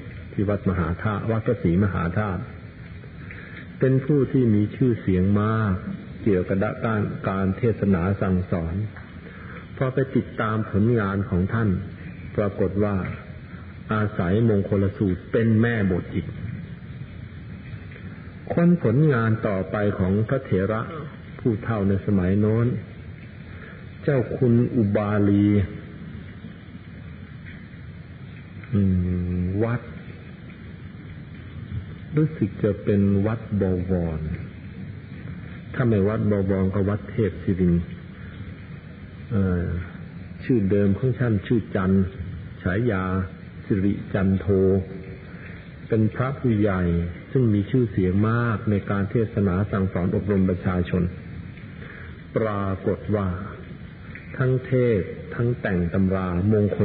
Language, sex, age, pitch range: Thai, male, 50-69, 95-110 Hz